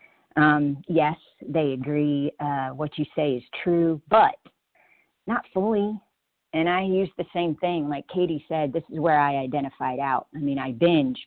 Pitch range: 140-175 Hz